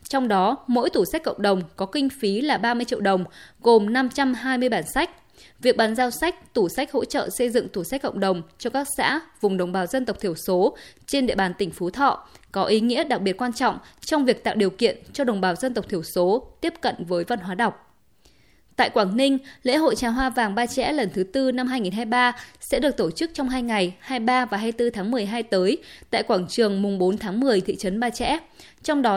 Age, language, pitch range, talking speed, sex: 20-39, Vietnamese, 205-270 Hz, 235 wpm, female